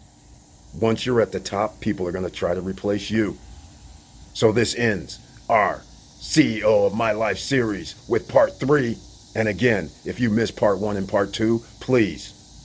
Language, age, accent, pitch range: English, 50-69, American, 95-115 Hz